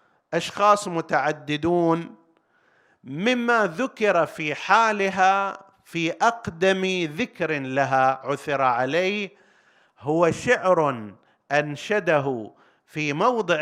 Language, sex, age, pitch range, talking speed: Arabic, male, 50-69, 140-195 Hz, 75 wpm